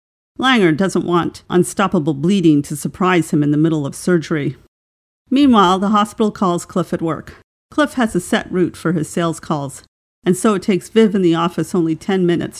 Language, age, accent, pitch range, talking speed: English, 50-69, American, 155-190 Hz, 190 wpm